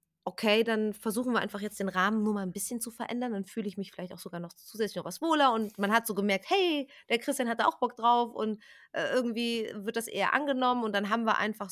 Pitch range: 190-235 Hz